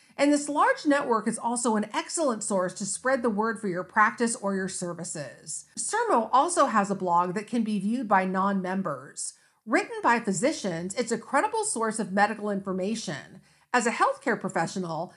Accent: American